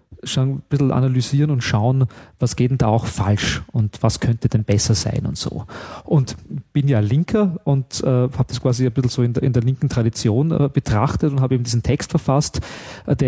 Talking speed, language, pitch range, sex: 210 wpm, German, 120-145 Hz, male